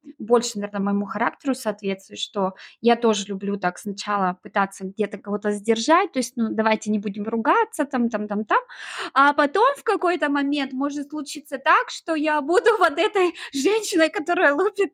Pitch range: 220-285 Hz